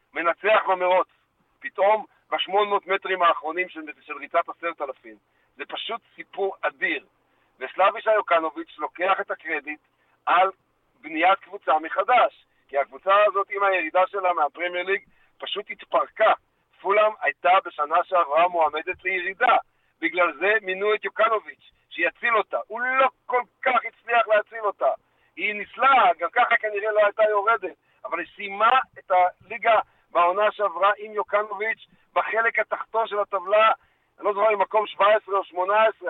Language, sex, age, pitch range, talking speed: Hebrew, male, 50-69, 180-225 Hz, 140 wpm